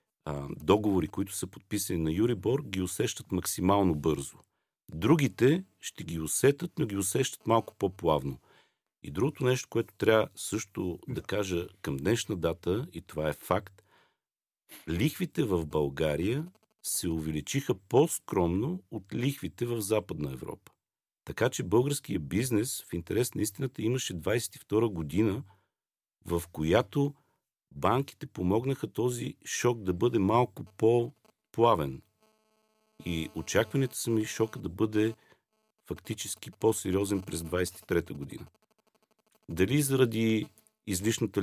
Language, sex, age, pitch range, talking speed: Bulgarian, male, 50-69, 90-130 Hz, 120 wpm